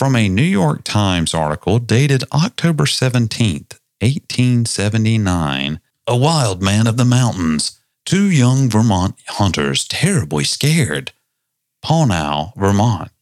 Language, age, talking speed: English, 40-59, 110 wpm